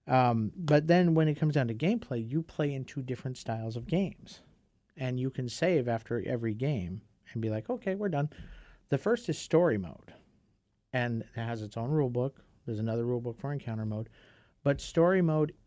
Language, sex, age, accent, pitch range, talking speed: English, male, 50-69, American, 110-140 Hz, 190 wpm